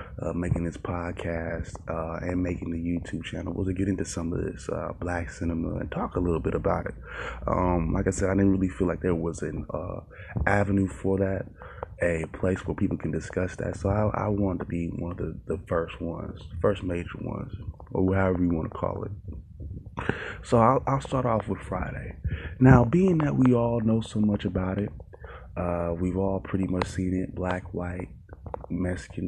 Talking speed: 205 wpm